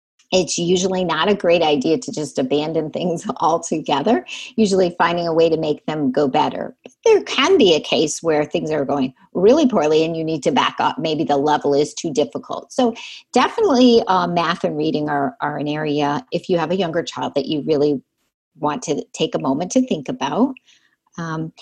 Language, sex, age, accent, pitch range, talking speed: English, female, 50-69, American, 155-225 Hz, 200 wpm